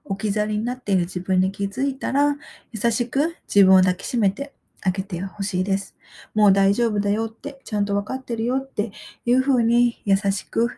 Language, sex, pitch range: Japanese, female, 190-255 Hz